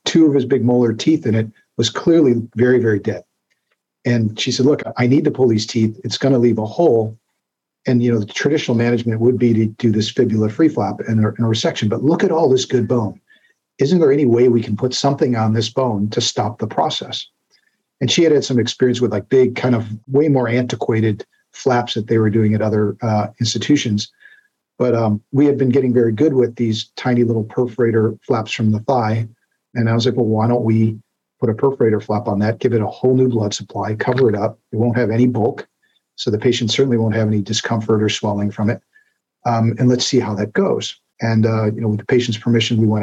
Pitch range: 110-125 Hz